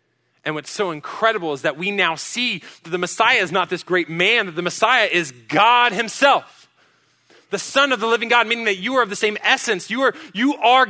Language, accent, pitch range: English, American, 130-200 Hz